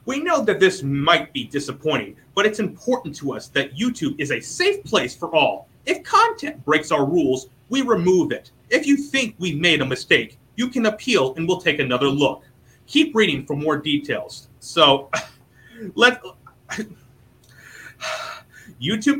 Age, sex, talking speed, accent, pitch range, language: 30-49, male, 160 wpm, American, 135-195 Hz, English